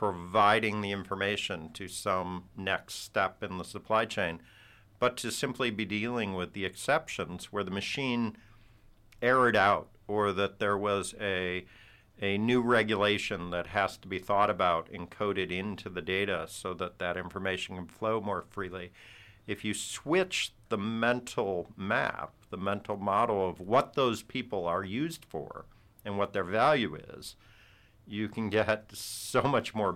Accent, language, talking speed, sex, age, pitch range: American, English, 155 wpm, male, 50-69, 95-110 Hz